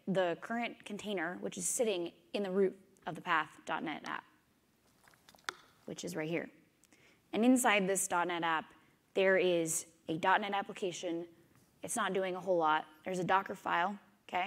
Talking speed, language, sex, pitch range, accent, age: 160 wpm, English, female, 170-210 Hz, American, 20-39